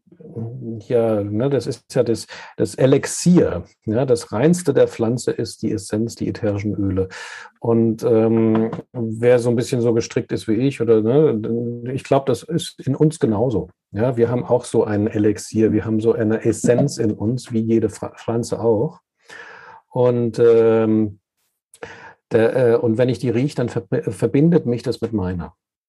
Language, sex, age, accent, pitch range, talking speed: German, male, 50-69, German, 110-140 Hz, 170 wpm